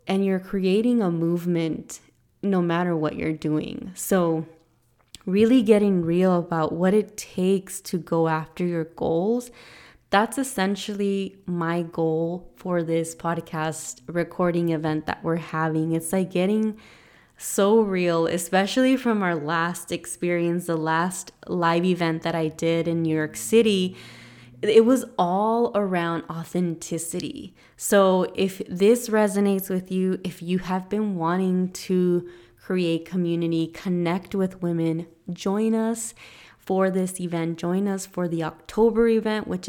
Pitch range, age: 165-195 Hz, 20-39